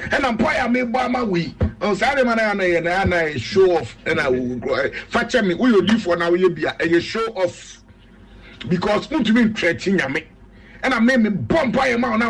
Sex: male